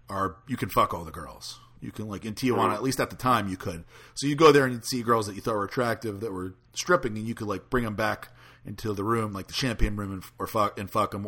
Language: English